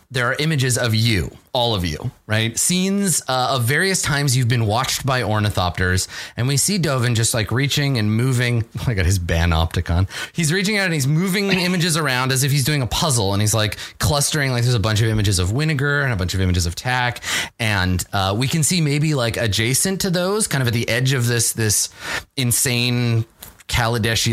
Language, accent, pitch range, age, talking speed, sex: English, American, 95-135 Hz, 30-49, 215 wpm, male